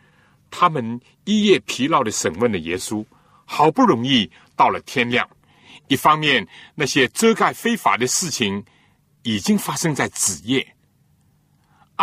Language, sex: Chinese, male